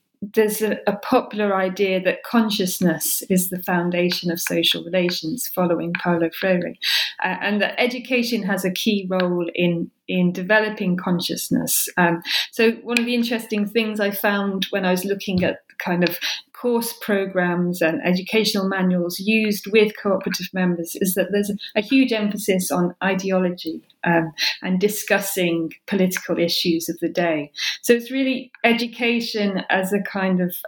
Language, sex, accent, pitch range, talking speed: English, female, British, 180-215 Hz, 145 wpm